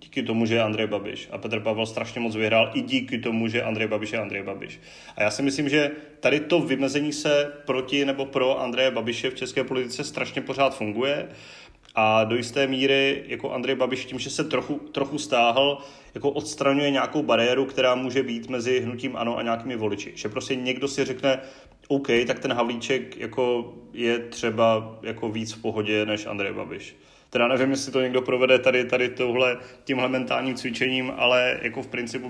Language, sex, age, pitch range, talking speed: Czech, male, 30-49, 110-130 Hz, 190 wpm